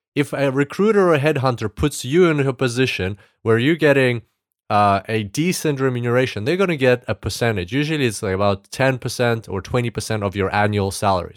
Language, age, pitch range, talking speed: English, 30-49, 110-150 Hz, 185 wpm